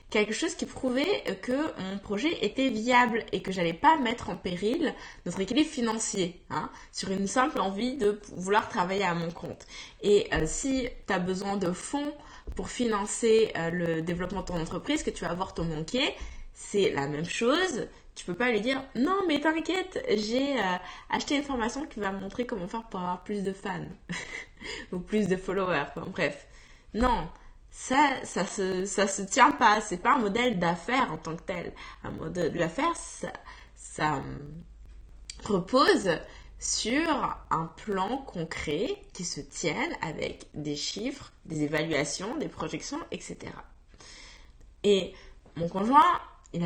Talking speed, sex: 165 wpm, female